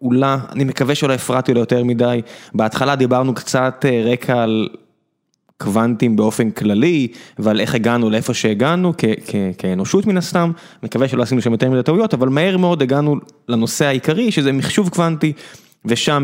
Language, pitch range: Hebrew, 115-145 Hz